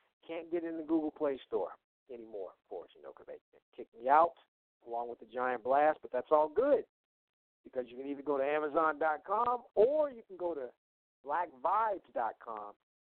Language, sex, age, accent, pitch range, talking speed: English, male, 40-59, American, 125-210 Hz, 175 wpm